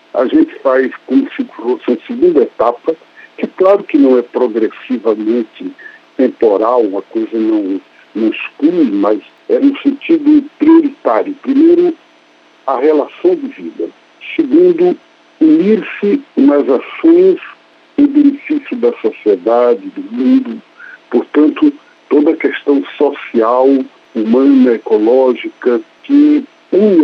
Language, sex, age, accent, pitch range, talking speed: Portuguese, male, 60-79, Brazilian, 245-340 Hz, 105 wpm